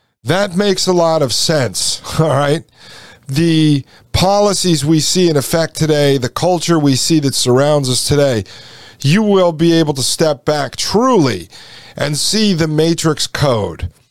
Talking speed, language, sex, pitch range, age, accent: 155 wpm, English, male, 120-165 Hz, 50-69, American